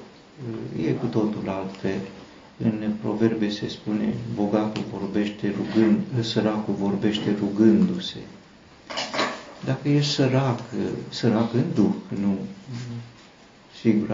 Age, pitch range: 50-69, 105-115 Hz